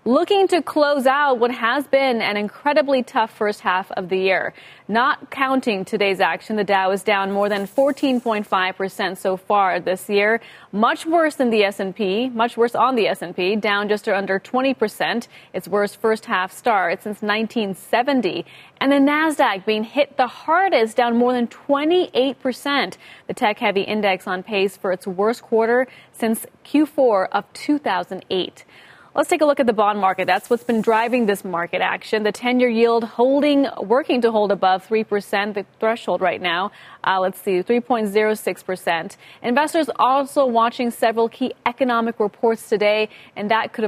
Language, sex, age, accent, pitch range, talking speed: English, female, 30-49, American, 200-260 Hz, 170 wpm